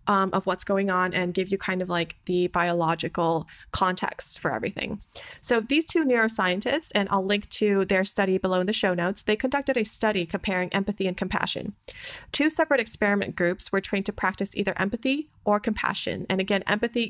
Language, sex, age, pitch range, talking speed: English, female, 20-39, 185-220 Hz, 190 wpm